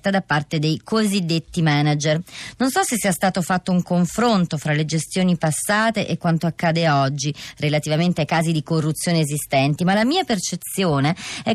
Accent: native